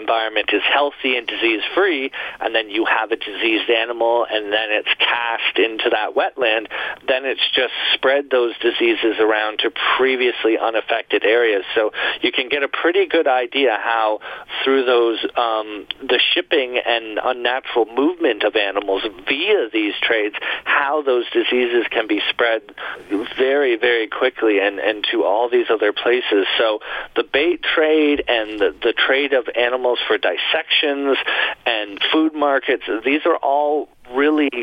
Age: 40-59